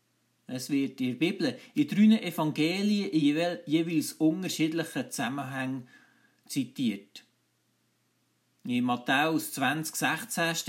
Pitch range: 150-215 Hz